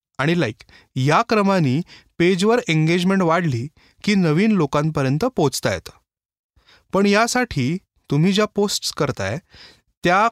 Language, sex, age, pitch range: Marathi, male, 30-49, 145-205 Hz